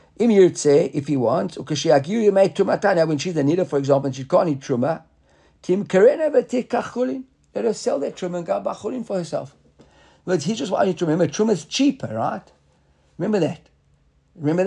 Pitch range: 140-180 Hz